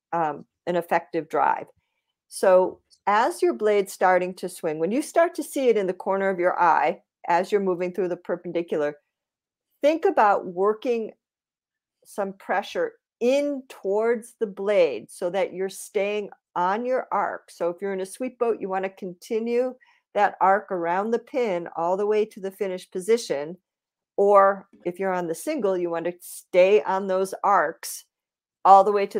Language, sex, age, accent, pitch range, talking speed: English, female, 50-69, American, 180-235 Hz, 175 wpm